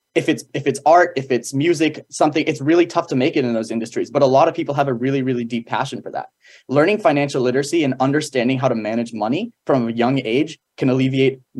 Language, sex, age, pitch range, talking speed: English, male, 20-39, 120-145 Hz, 240 wpm